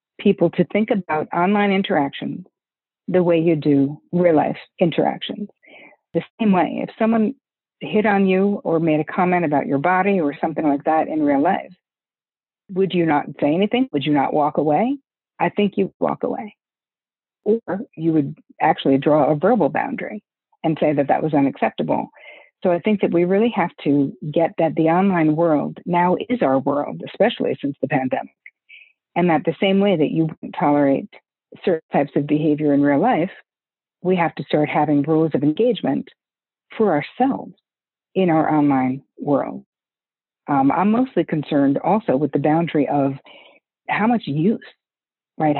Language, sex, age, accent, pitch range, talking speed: English, female, 50-69, American, 150-205 Hz, 170 wpm